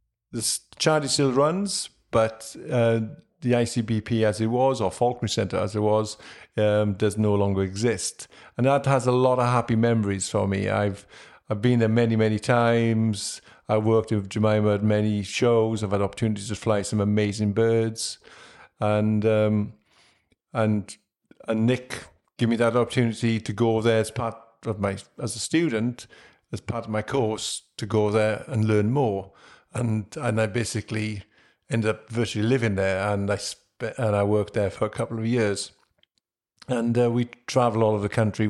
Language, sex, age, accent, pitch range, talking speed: English, male, 50-69, British, 105-120 Hz, 175 wpm